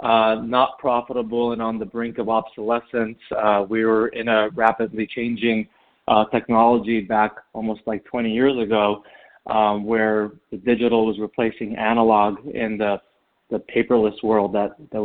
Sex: male